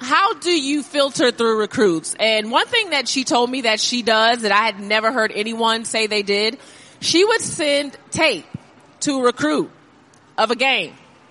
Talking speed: 185 wpm